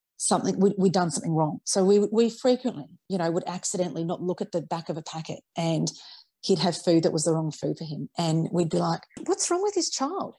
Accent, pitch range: Australian, 170-215 Hz